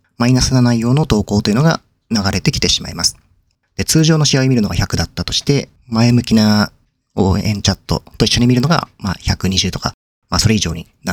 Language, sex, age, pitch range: Japanese, male, 40-59, 95-125 Hz